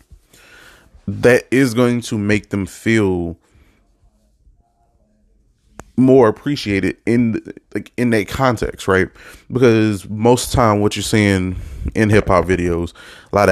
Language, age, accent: English, 20-39, American